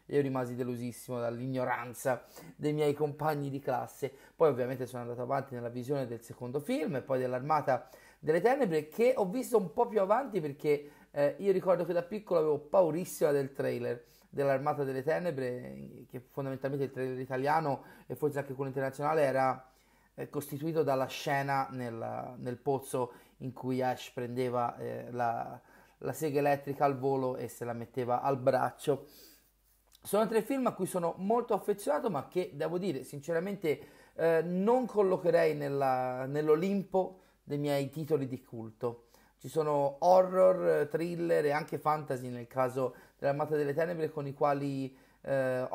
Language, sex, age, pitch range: Italian, male, 30-49, 130-160 Hz